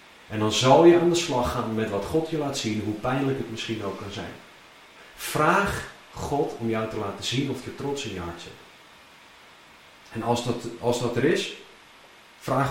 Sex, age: male, 40-59